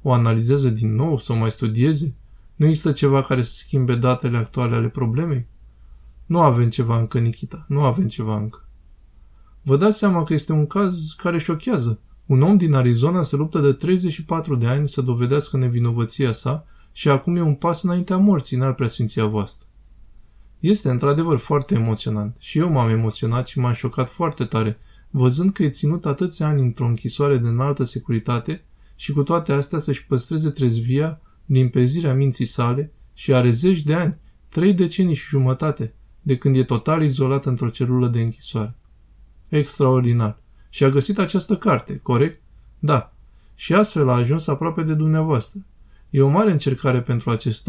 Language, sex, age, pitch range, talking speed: Romanian, male, 20-39, 115-150 Hz, 165 wpm